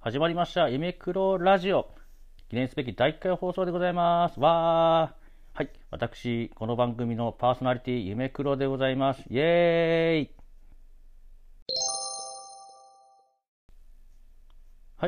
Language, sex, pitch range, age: Japanese, male, 90-130 Hz, 40-59